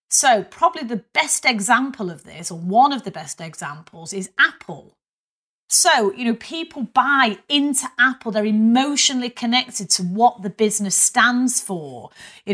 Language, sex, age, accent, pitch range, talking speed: English, female, 30-49, British, 190-250 Hz, 155 wpm